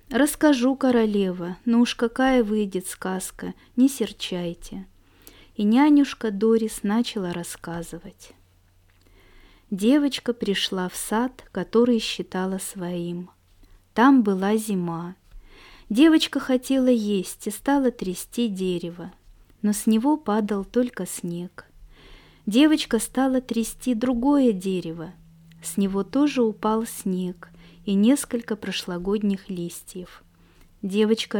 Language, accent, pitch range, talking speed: Russian, native, 175-240 Hz, 100 wpm